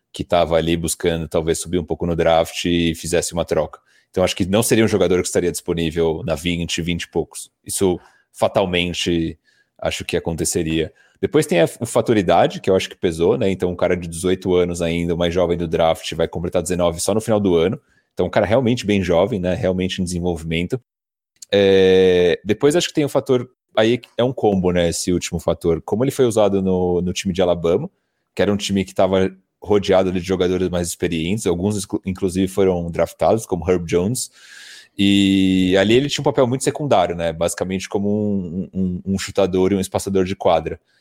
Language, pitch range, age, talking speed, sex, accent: Portuguese, 85-100 Hz, 30-49, 200 wpm, male, Brazilian